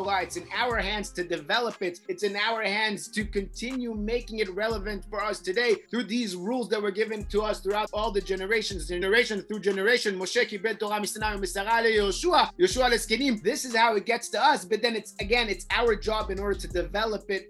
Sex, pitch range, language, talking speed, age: male, 195-235 Hz, English, 190 wpm, 30-49